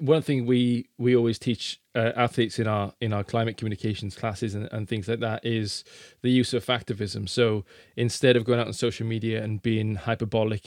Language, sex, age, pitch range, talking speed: English, male, 20-39, 115-135 Hz, 200 wpm